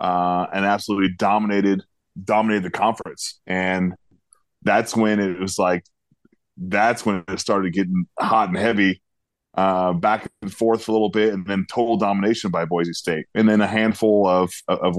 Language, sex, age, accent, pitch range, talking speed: English, male, 20-39, American, 100-115 Hz, 170 wpm